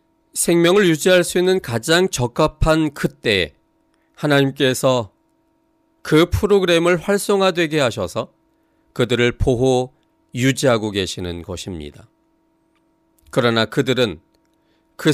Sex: male